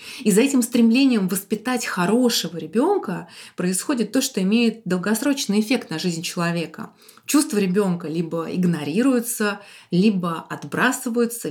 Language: Russian